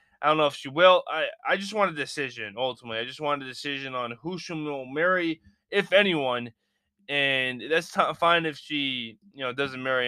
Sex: male